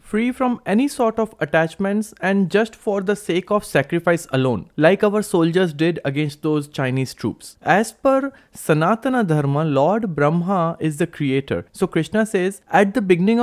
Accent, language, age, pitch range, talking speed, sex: Indian, English, 20-39, 145-205 Hz, 165 wpm, male